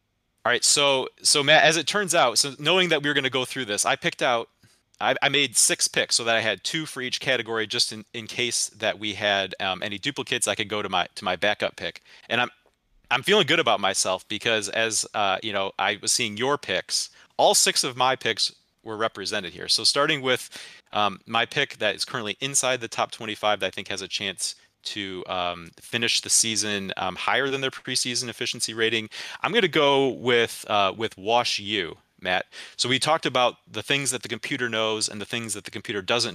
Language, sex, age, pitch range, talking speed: English, male, 30-49, 105-130 Hz, 220 wpm